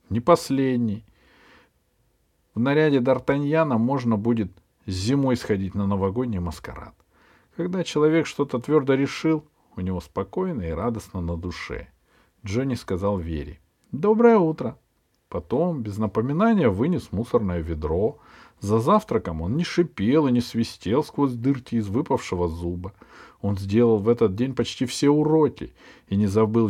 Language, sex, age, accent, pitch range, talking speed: Russian, male, 50-69, native, 100-140 Hz, 135 wpm